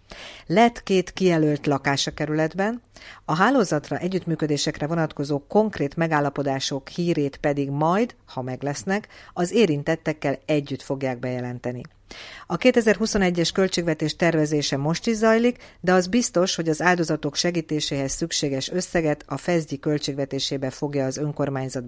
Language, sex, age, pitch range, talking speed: Hungarian, female, 50-69, 135-170 Hz, 120 wpm